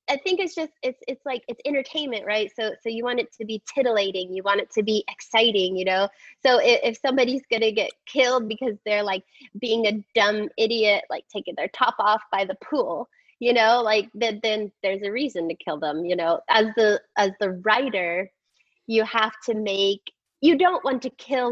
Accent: American